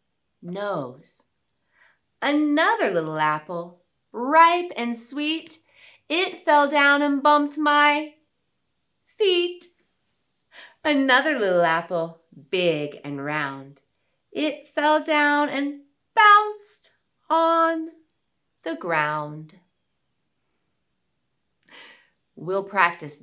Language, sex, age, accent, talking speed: English, female, 30-49, American, 75 wpm